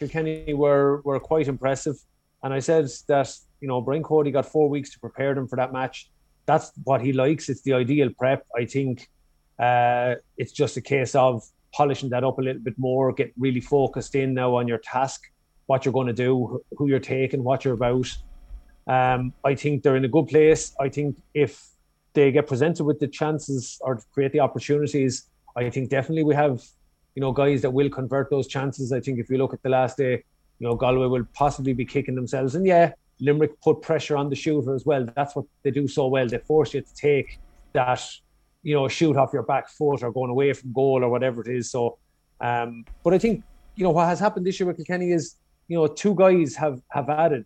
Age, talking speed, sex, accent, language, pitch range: 30-49, 225 wpm, male, Irish, English, 130-150 Hz